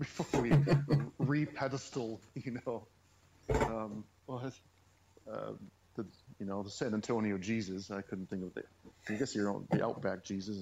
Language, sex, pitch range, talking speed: English, male, 100-125 Hz, 145 wpm